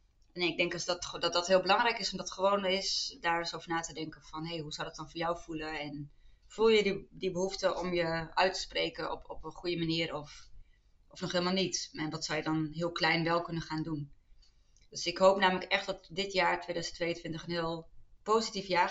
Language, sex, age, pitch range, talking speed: Dutch, female, 20-39, 160-185 Hz, 240 wpm